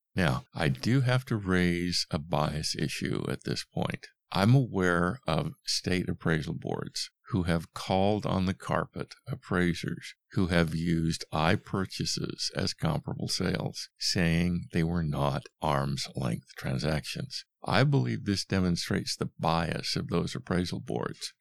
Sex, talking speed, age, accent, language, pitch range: male, 140 wpm, 50-69, American, English, 85-105 Hz